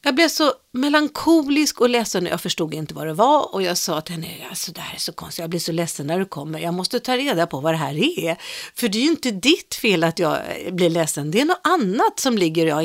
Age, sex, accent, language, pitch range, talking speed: 50-69, female, native, Swedish, 165-255 Hz, 260 wpm